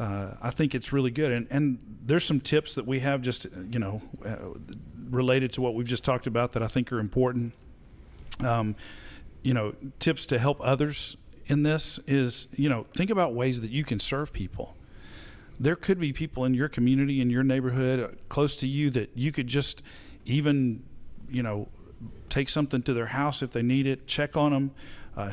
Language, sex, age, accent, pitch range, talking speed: English, male, 40-59, American, 115-140 Hz, 195 wpm